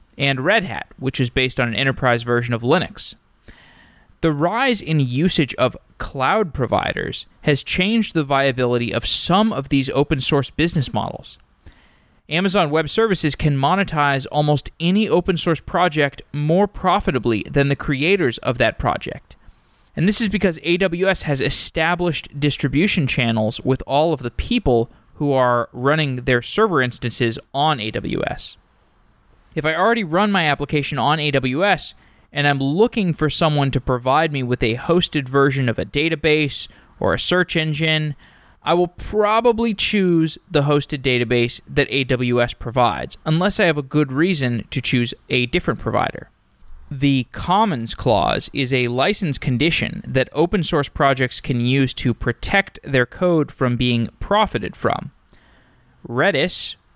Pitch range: 125-170 Hz